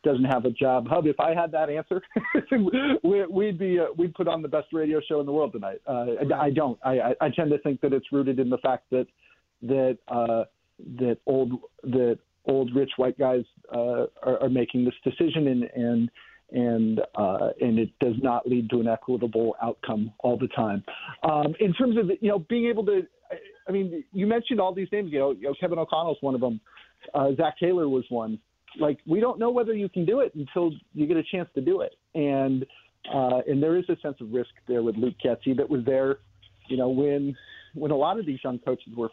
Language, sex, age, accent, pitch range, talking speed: English, male, 50-69, American, 120-165 Hz, 225 wpm